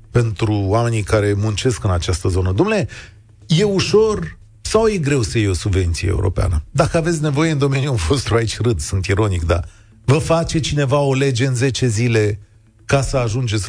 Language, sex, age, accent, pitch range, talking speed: Romanian, male, 40-59, native, 105-145 Hz, 175 wpm